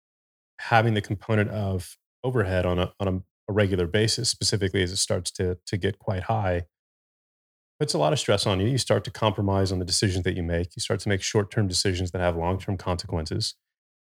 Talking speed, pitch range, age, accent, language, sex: 200 wpm, 90-105 Hz, 30-49, American, English, male